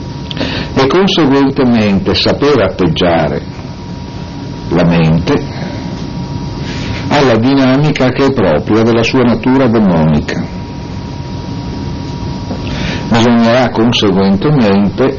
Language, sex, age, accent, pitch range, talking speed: Italian, male, 60-79, native, 95-135 Hz, 65 wpm